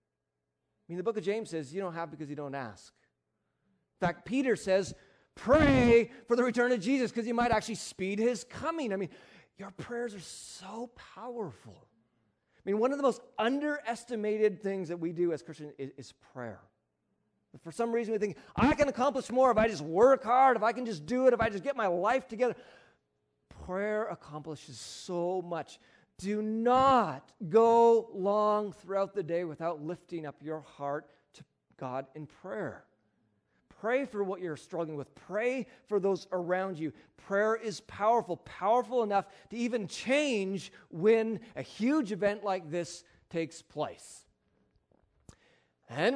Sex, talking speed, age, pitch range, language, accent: male, 170 wpm, 30-49, 160-235 Hz, English, American